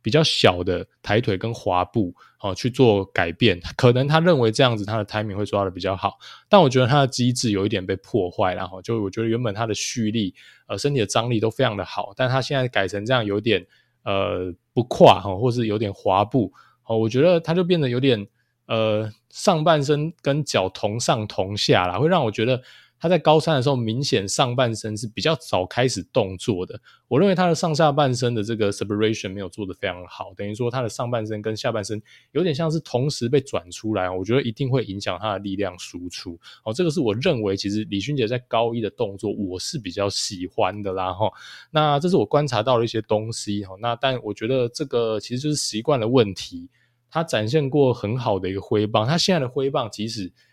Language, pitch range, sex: Chinese, 100-130 Hz, male